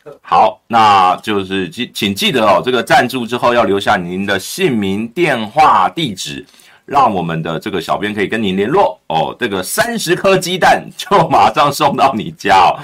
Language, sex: Chinese, male